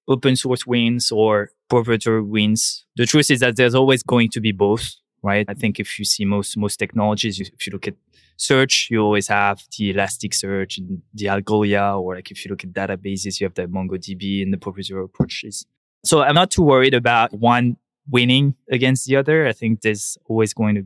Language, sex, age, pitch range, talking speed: English, male, 20-39, 105-125 Hz, 205 wpm